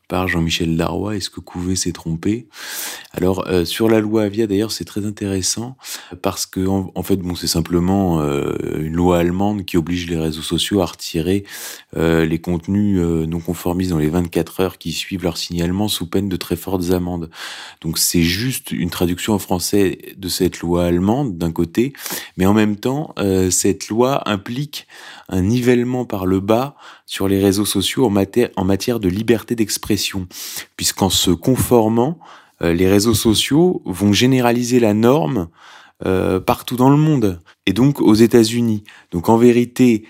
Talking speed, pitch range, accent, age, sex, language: 170 wpm, 90-110 Hz, French, 30-49, male, French